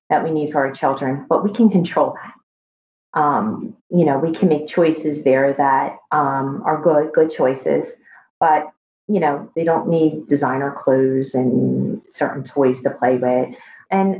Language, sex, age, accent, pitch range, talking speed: English, female, 40-59, American, 145-180 Hz, 170 wpm